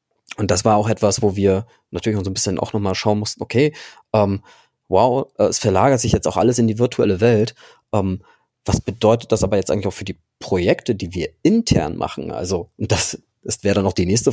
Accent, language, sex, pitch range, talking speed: German, German, male, 95-110 Hz, 215 wpm